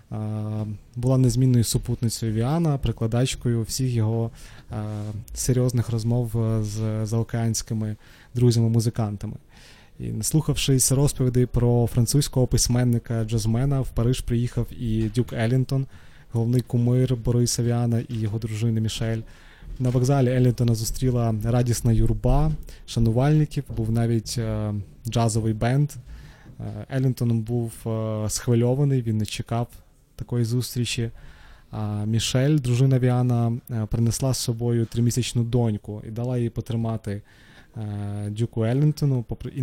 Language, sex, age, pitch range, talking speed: Ukrainian, male, 20-39, 110-125 Hz, 105 wpm